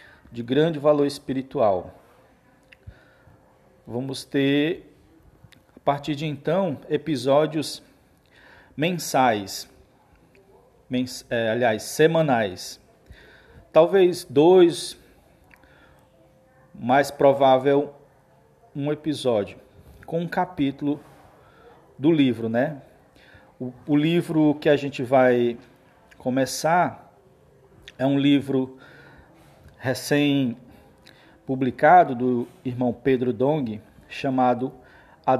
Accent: Brazilian